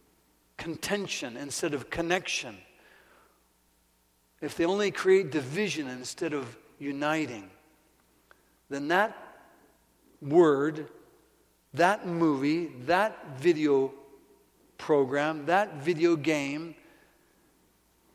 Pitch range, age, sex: 135-175 Hz, 60-79, male